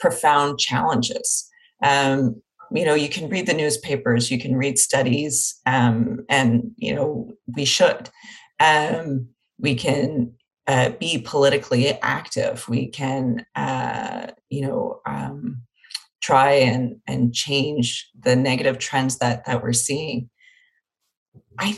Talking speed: 125 wpm